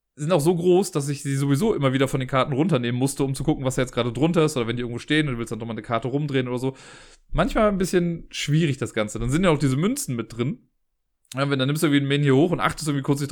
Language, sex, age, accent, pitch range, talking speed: German, male, 30-49, German, 120-155 Hz, 300 wpm